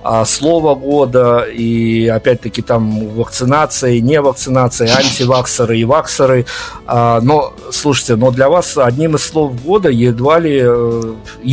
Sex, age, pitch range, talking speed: male, 50-69, 115-145 Hz, 120 wpm